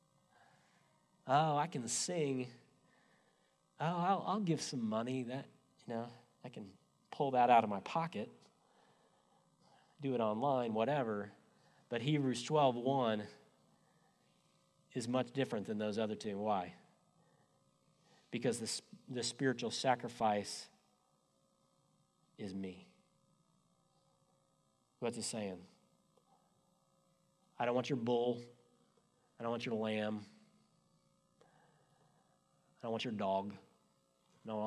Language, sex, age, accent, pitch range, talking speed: English, male, 30-49, American, 105-160 Hz, 105 wpm